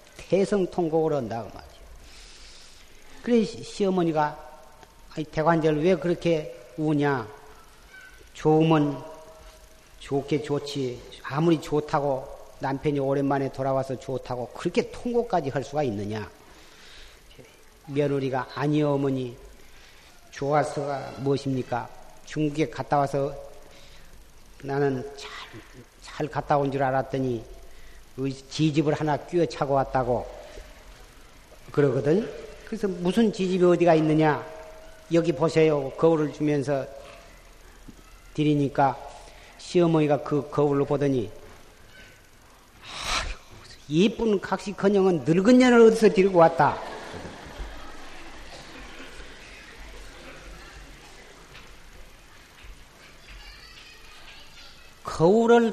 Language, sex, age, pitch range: Korean, male, 40-59, 135-170 Hz